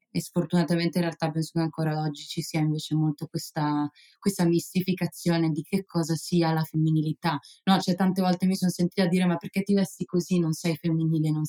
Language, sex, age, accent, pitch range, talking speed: Italian, female, 20-39, native, 165-195 Hz, 200 wpm